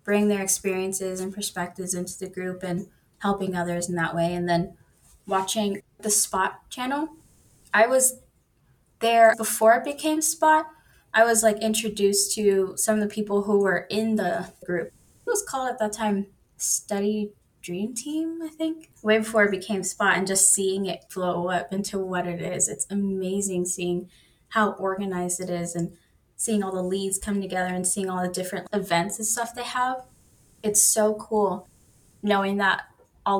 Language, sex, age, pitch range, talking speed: English, female, 10-29, 180-215 Hz, 175 wpm